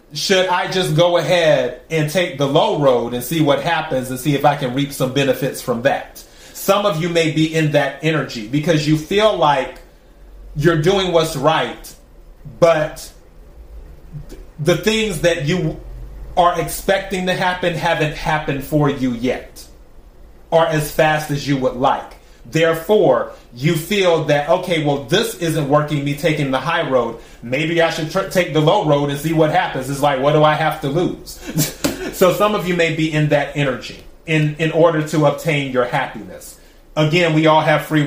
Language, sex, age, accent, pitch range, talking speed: English, male, 30-49, American, 140-170 Hz, 180 wpm